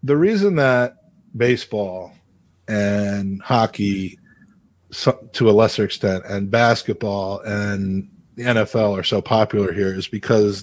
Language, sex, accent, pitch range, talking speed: English, male, American, 100-120 Hz, 125 wpm